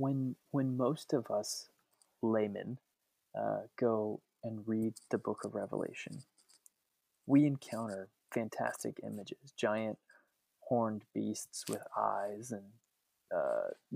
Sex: male